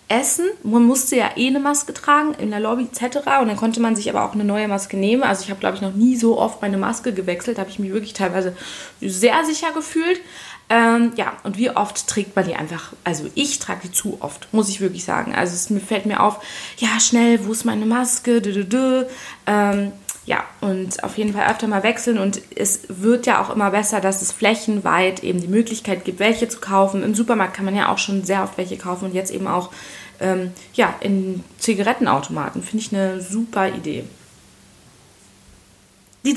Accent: German